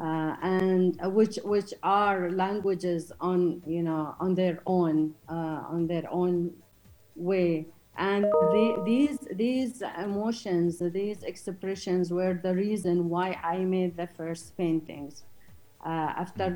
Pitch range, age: 175-200 Hz, 40-59